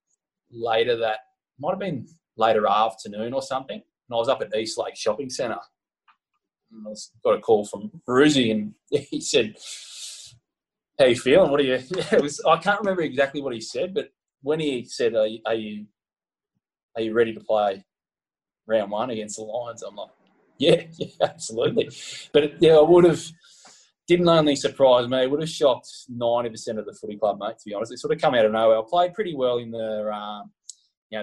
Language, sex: English, male